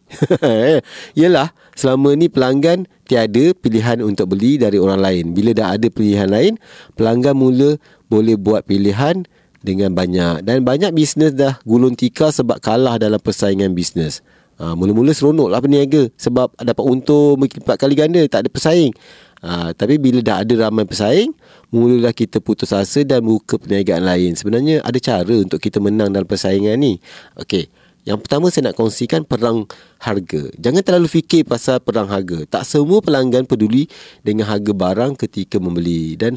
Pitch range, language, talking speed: 100-140 Hz, Malay, 160 wpm